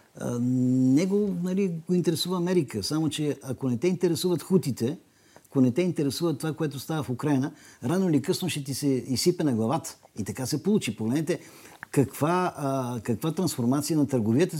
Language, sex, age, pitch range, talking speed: Bulgarian, male, 50-69, 120-160 Hz, 165 wpm